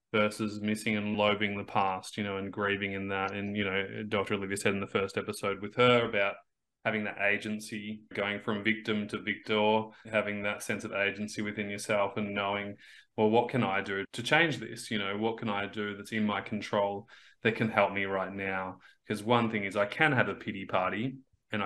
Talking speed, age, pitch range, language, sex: 215 wpm, 20-39, 100-115 Hz, English, male